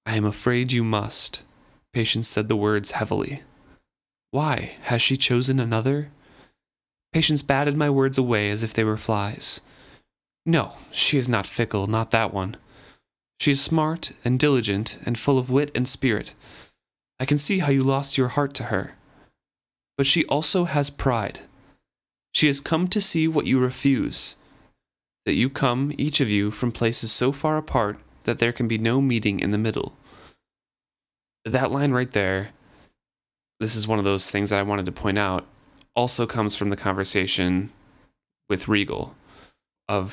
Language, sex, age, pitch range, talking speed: English, male, 30-49, 100-135 Hz, 165 wpm